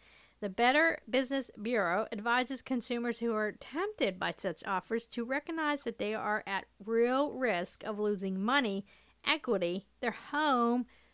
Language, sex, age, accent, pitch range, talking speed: English, female, 40-59, American, 205-265 Hz, 140 wpm